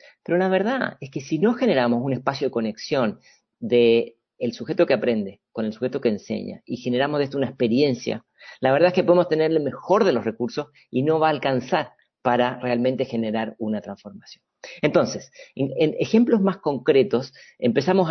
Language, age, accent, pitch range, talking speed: English, 40-59, Argentinian, 120-160 Hz, 185 wpm